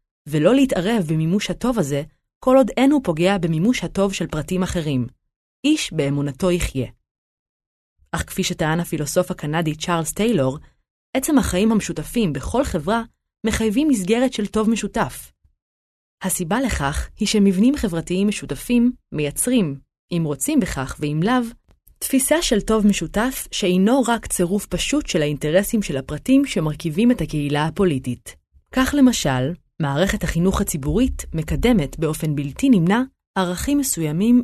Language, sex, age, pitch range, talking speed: Hebrew, female, 20-39, 155-230 Hz, 125 wpm